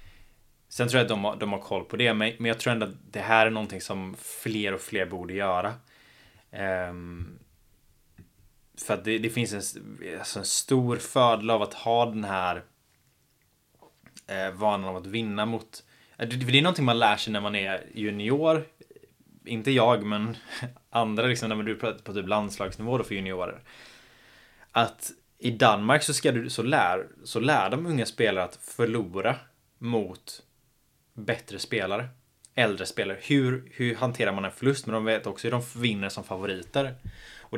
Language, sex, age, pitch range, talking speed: Swedish, male, 20-39, 100-120 Hz, 180 wpm